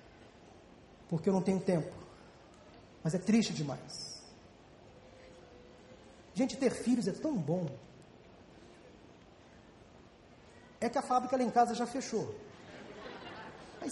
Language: Portuguese